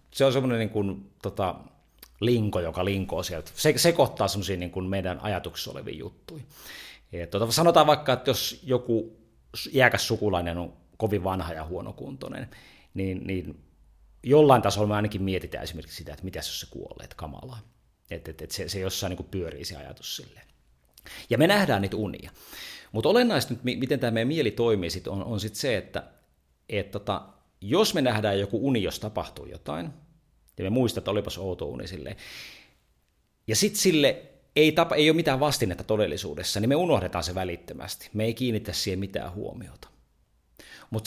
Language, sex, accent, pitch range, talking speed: Finnish, male, native, 85-120 Hz, 175 wpm